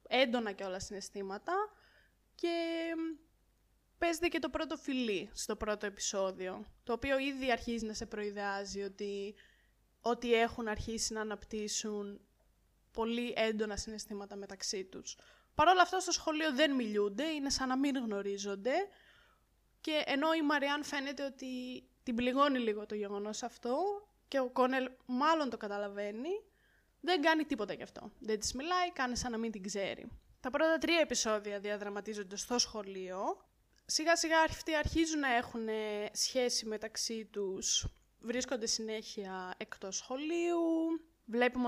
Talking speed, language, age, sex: 135 wpm, Greek, 20-39, female